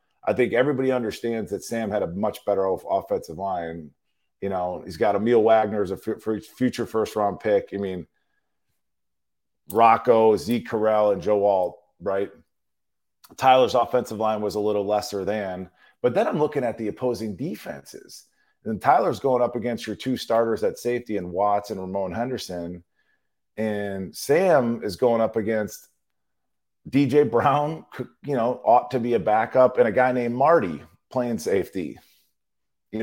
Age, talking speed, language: 40-59, 160 wpm, English